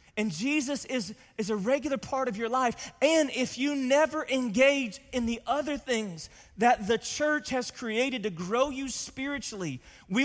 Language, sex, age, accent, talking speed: English, male, 30-49, American, 170 wpm